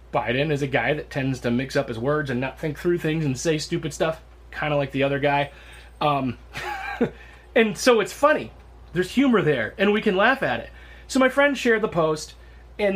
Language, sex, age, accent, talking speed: English, male, 30-49, American, 220 wpm